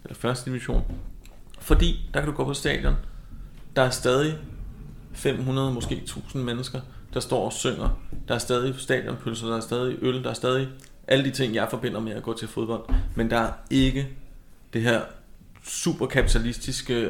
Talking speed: 170 wpm